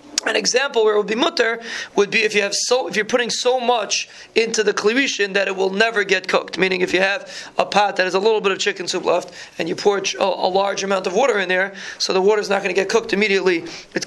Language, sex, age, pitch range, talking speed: English, male, 20-39, 195-245 Hz, 280 wpm